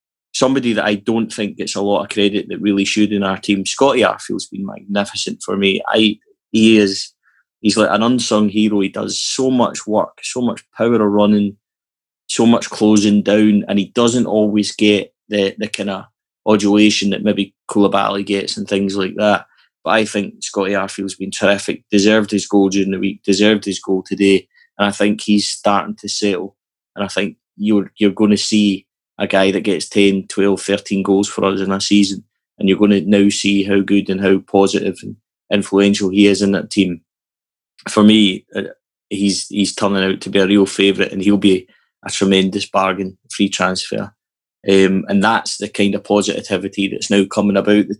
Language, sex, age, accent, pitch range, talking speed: English, male, 20-39, British, 95-105 Hz, 195 wpm